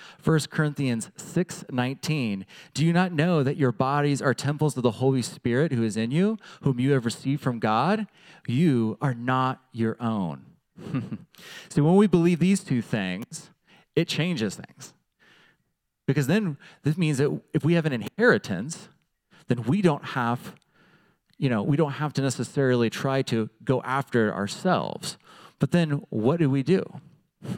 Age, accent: 30-49, American